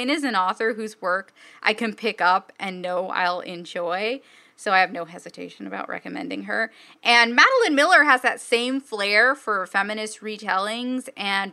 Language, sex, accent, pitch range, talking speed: English, female, American, 195-250 Hz, 170 wpm